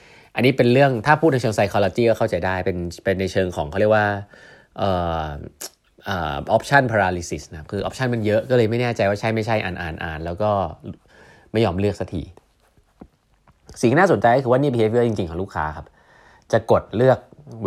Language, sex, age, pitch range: Thai, male, 20-39, 95-125 Hz